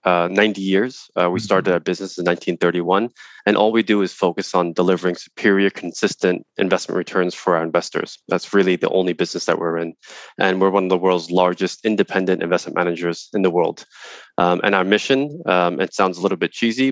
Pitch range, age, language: 90-100 Hz, 20-39, Thai